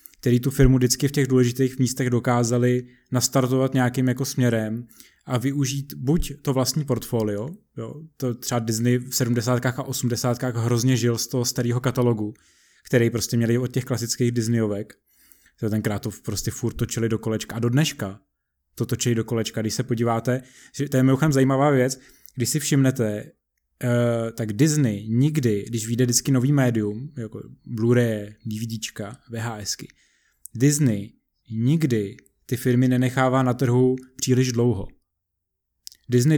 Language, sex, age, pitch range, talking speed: Czech, male, 20-39, 115-135 Hz, 145 wpm